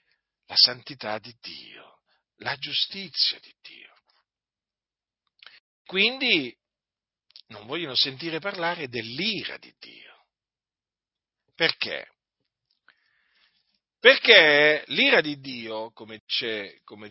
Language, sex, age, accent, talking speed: Italian, male, 50-69, native, 80 wpm